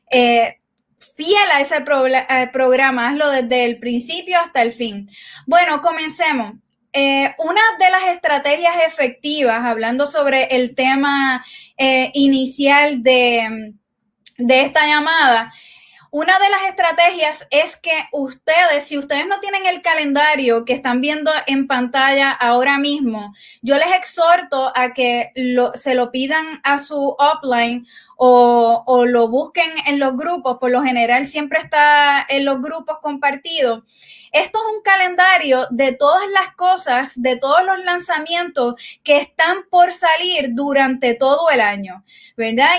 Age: 20-39